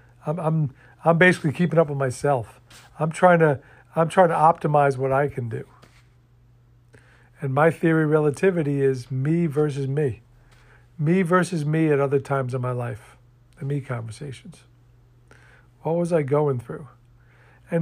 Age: 50-69